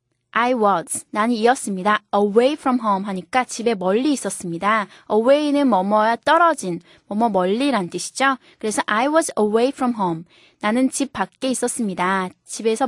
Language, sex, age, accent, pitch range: Korean, female, 20-39, native, 200-280 Hz